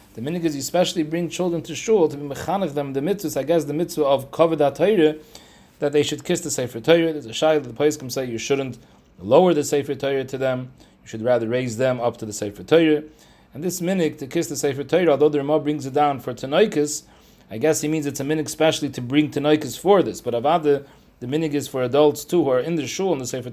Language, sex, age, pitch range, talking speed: English, male, 30-49, 125-155 Hz, 255 wpm